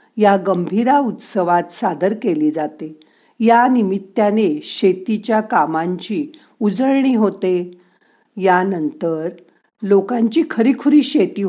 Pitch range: 180-230 Hz